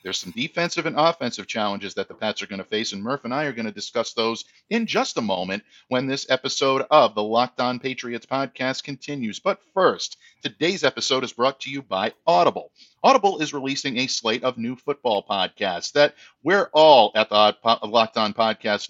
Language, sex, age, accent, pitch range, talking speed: English, male, 50-69, American, 110-150 Hz, 200 wpm